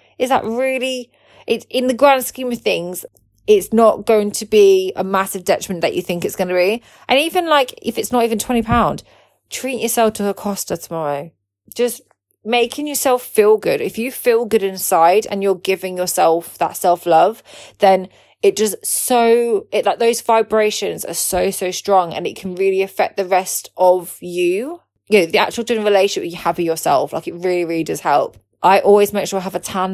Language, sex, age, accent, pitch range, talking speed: English, female, 20-39, British, 175-225 Hz, 200 wpm